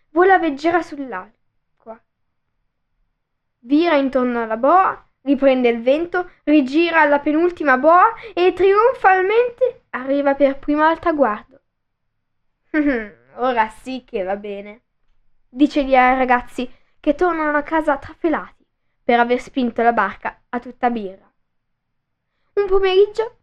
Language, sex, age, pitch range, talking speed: Italian, female, 10-29, 240-325 Hz, 120 wpm